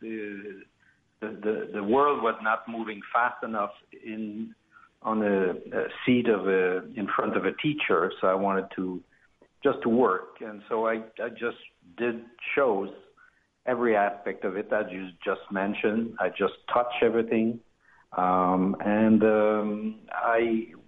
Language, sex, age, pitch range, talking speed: English, male, 60-79, 105-120 Hz, 145 wpm